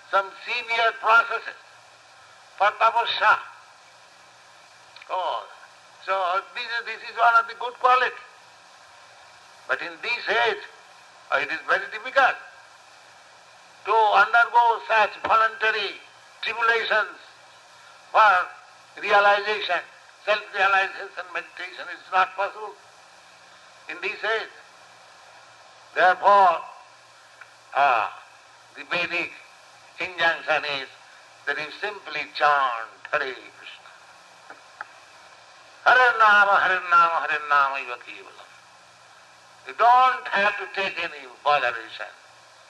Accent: Indian